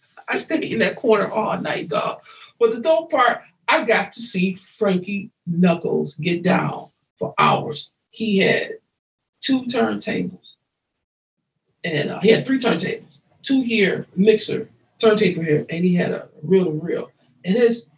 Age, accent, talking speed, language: 40-59, American, 155 wpm, English